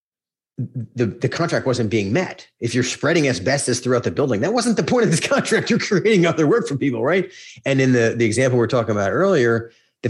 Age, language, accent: 30-49, English, American